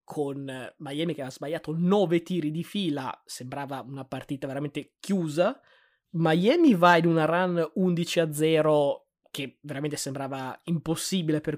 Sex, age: male, 20-39